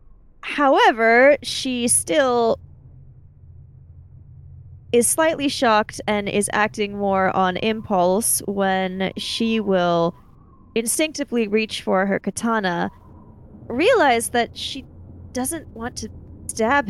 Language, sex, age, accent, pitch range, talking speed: English, female, 10-29, American, 180-240 Hz, 95 wpm